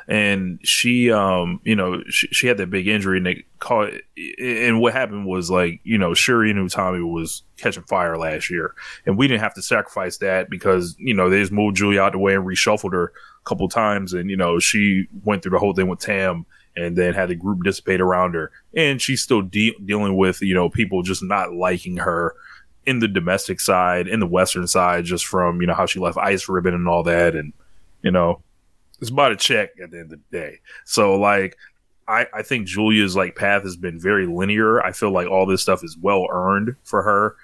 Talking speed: 225 wpm